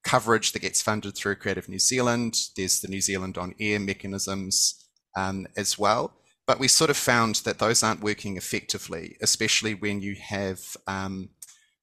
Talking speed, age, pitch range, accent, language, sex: 165 wpm, 30-49, 95-110 Hz, Australian, English, male